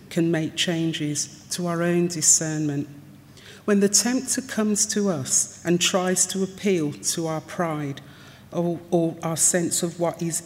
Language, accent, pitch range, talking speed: English, British, 150-180 Hz, 155 wpm